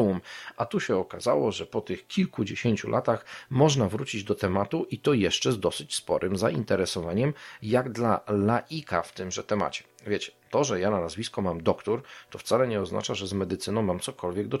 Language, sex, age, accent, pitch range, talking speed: Polish, male, 40-59, native, 100-130 Hz, 180 wpm